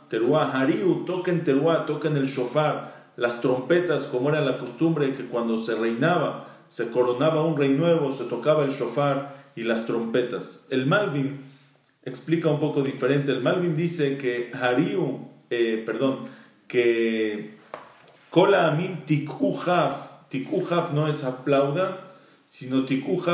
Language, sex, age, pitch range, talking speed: English, male, 40-59, 130-165 Hz, 140 wpm